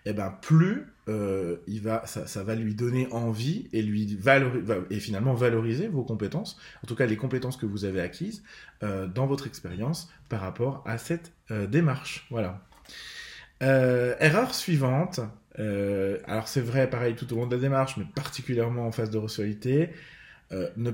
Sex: male